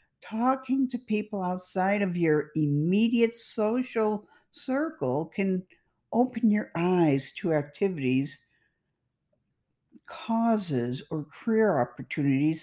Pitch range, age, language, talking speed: 160-215 Hz, 50-69, English, 90 wpm